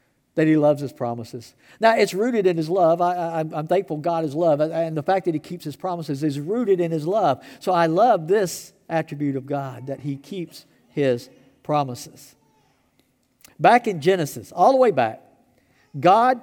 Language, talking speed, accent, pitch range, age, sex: English, 180 wpm, American, 135-210 Hz, 50-69, male